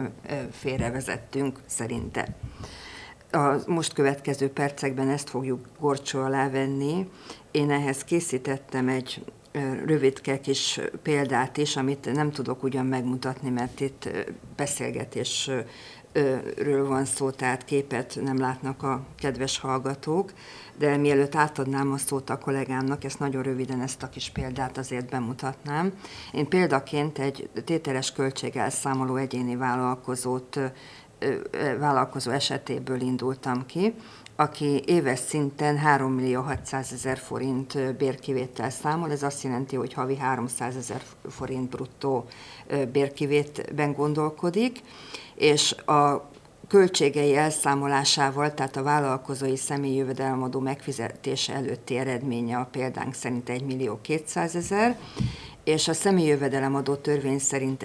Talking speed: 110 wpm